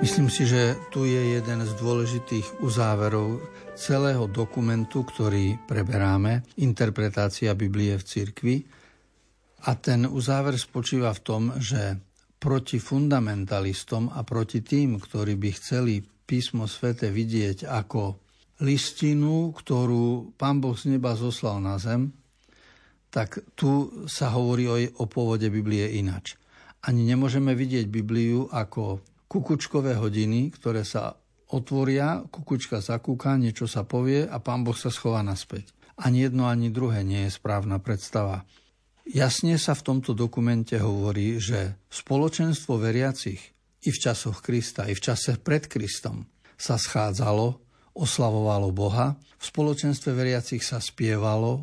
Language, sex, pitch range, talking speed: Slovak, male, 105-130 Hz, 125 wpm